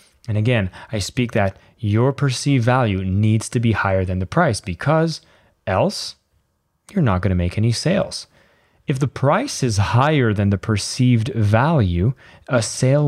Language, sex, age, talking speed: English, male, 20-39, 160 wpm